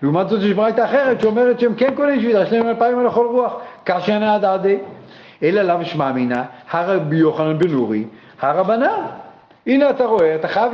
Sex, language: male, Hebrew